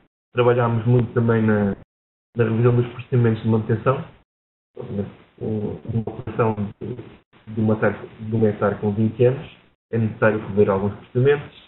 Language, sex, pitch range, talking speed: English, male, 105-125 Hz, 120 wpm